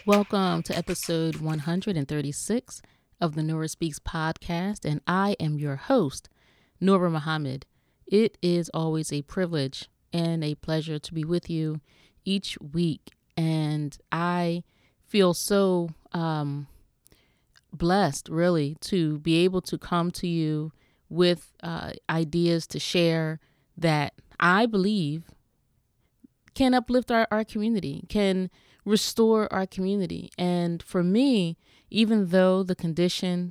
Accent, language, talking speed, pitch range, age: American, English, 125 wpm, 160-195 Hz, 30-49